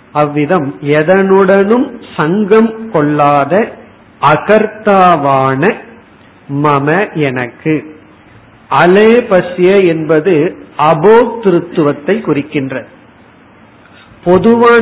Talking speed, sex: 45 wpm, male